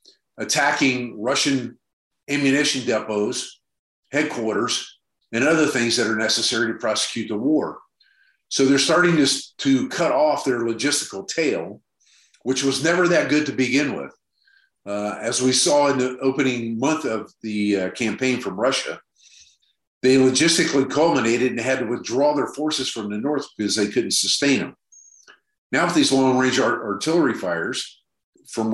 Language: German